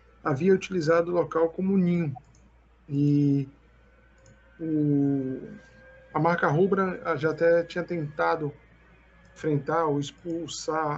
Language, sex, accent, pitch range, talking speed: Portuguese, male, Brazilian, 140-180 Hz, 95 wpm